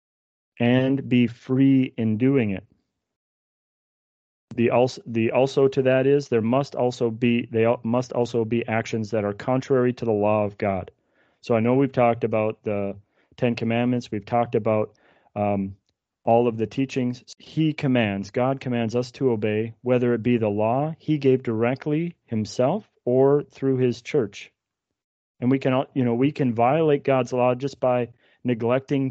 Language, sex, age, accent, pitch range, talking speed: English, male, 30-49, American, 110-130 Hz, 165 wpm